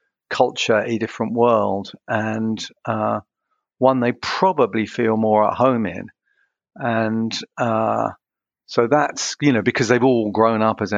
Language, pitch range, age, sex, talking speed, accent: English, 105-125 Hz, 50-69, male, 140 wpm, British